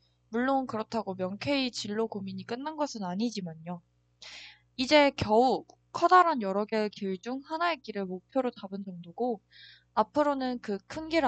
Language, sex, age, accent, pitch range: Korean, female, 20-39, native, 190-260 Hz